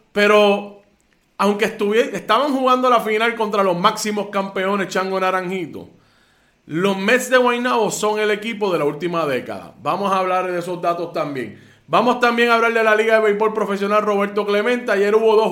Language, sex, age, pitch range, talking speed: Spanish, male, 30-49, 185-230 Hz, 175 wpm